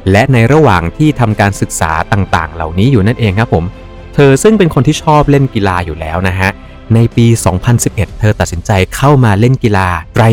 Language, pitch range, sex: Thai, 95-125 Hz, male